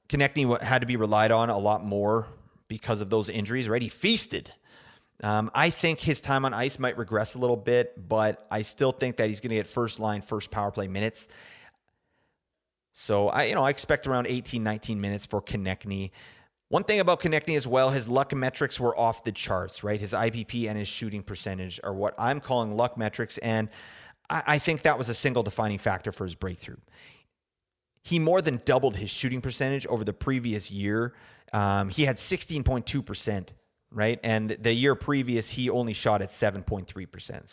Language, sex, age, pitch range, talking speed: English, male, 30-49, 110-135 Hz, 190 wpm